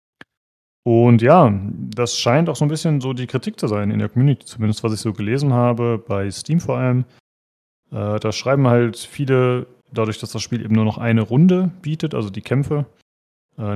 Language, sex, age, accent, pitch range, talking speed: German, male, 30-49, German, 105-130 Hz, 195 wpm